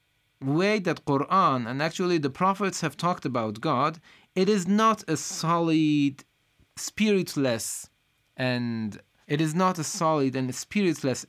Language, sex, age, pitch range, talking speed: Persian, male, 30-49, 125-175 Hz, 135 wpm